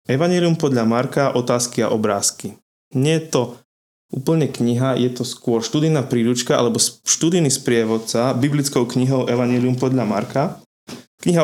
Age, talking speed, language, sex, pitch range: 20-39, 130 wpm, Slovak, male, 115-130 Hz